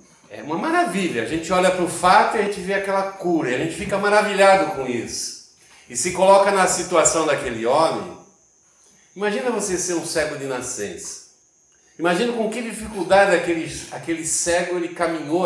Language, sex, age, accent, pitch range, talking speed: Portuguese, male, 60-79, Brazilian, 125-185 Hz, 170 wpm